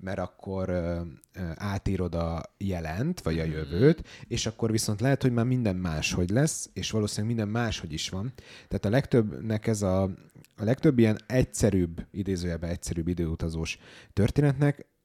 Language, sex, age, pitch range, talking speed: Hungarian, male, 30-49, 90-115 Hz, 145 wpm